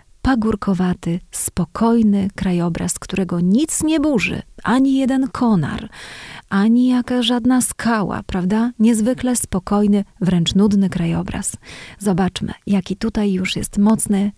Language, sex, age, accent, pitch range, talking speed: Polish, female, 30-49, native, 185-215 Hz, 110 wpm